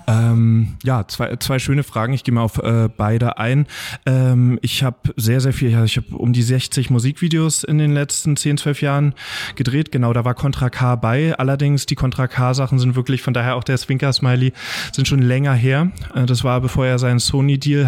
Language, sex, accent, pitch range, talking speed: German, male, German, 120-135 Hz, 200 wpm